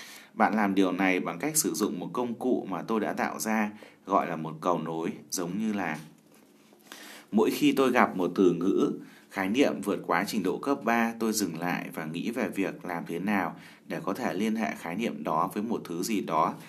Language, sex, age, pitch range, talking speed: Vietnamese, male, 20-39, 85-115 Hz, 225 wpm